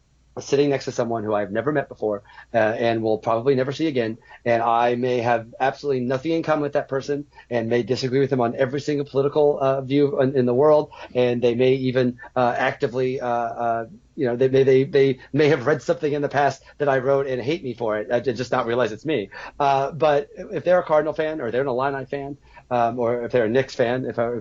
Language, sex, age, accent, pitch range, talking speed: English, male, 30-49, American, 120-145 Hz, 245 wpm